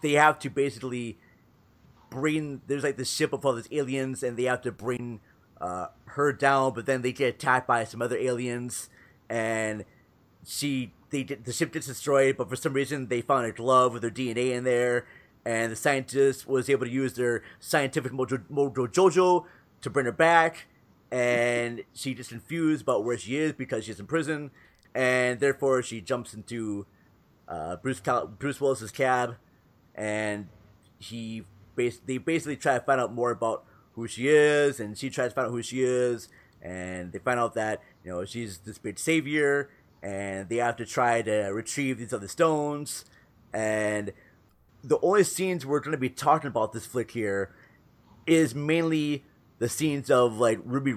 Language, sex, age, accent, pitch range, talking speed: English, male, 30-49, American, 115-140 Hz, 180 wpm